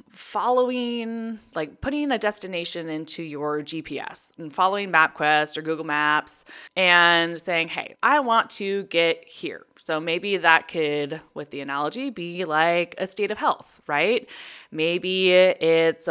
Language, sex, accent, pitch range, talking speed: English, female, American, 165-235 Hz, 140 wpm